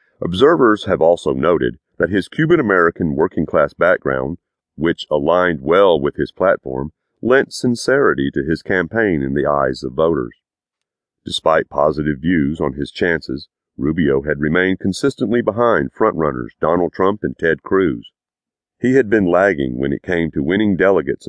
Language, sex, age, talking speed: English, male, 40-59, 145 wpm